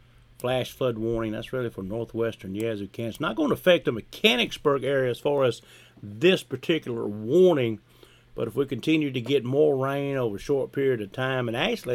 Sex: male